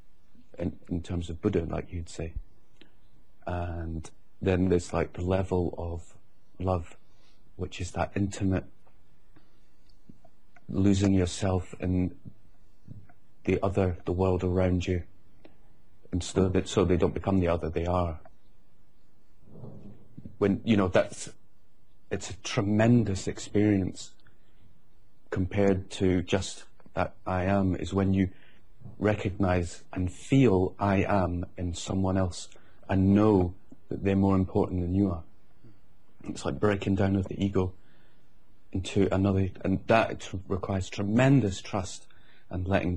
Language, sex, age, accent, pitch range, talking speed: English, male, 40-59, British, 90-100 Hz, 125 wpm